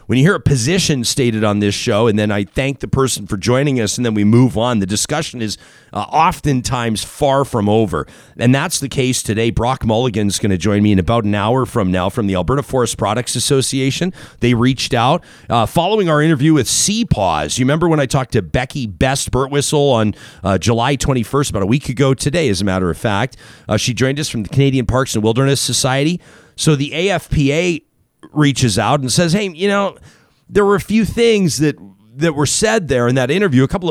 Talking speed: 215 wpm